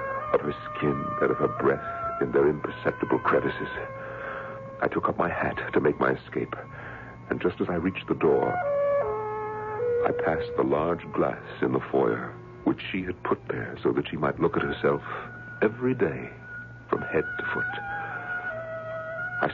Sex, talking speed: male, 165 wpm